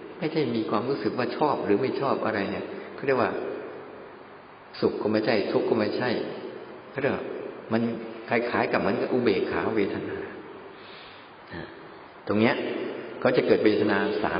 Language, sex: Thai, male